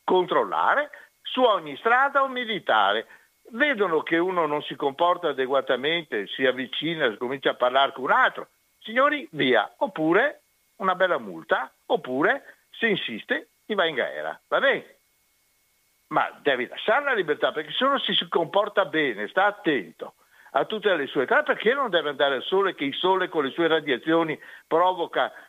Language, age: Italian, 60-79